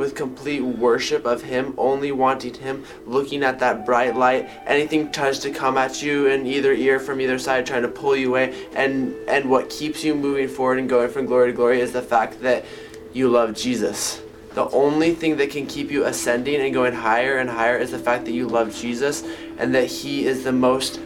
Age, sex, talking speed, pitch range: 20-39, male, 215 wpm, 125-140 Hz